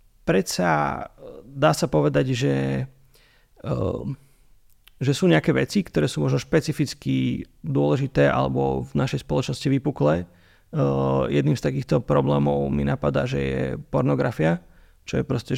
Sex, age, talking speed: male, 30-49, 120 wpm